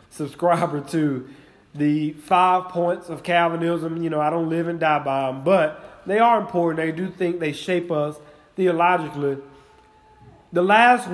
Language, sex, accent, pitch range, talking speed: English, male, American, 160-225 Hz, 155 wpm